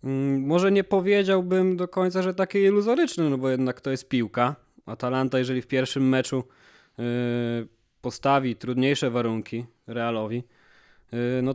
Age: 20-39